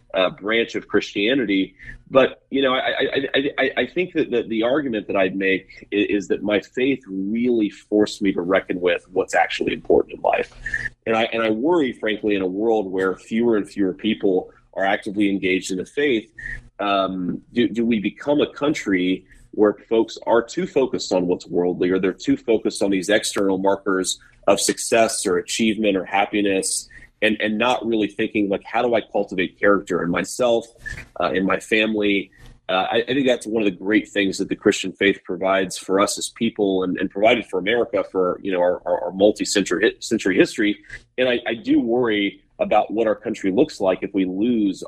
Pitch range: 95-115 Hz